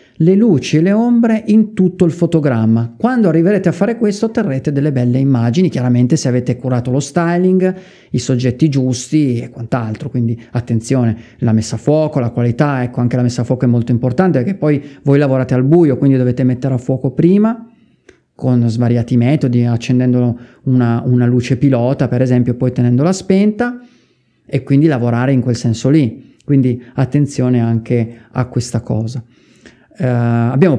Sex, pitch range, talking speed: male, 120-150 Hz, 165 wpm